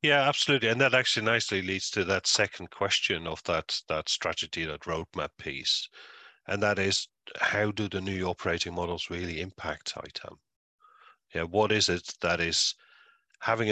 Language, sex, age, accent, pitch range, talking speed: English, male, 40-59, Irish, 80-100 Hz, 160 wpm